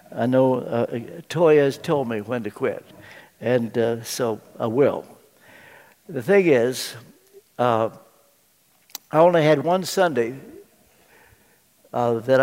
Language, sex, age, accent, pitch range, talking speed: English, male, 60-79, American, 125-165 Hz, 125 wpm